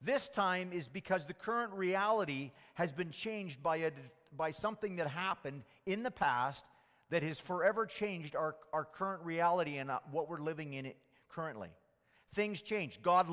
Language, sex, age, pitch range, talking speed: English, male, 40-59, 155-195 Hz, 170 wpm